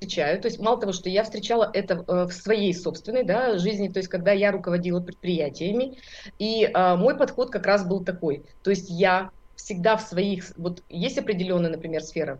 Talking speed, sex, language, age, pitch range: 185 wpm, female, Russian, 30-49, 180-225 Hz